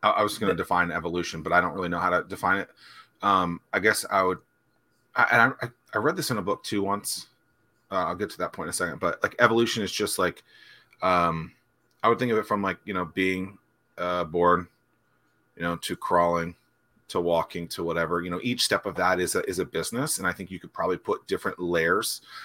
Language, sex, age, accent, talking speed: English, male, 30-49, American, 225 wpm